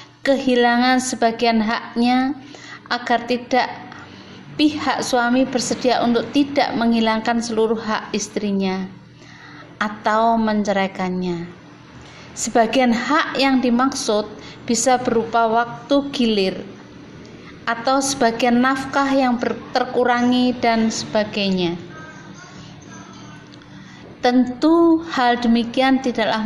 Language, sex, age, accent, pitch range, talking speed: Indonesian, female, 20-39, native, 210-250 Hz, 80 wpm